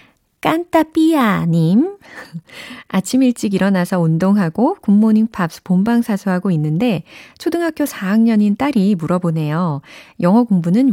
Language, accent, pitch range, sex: Korean, native, 165-240 Hz, female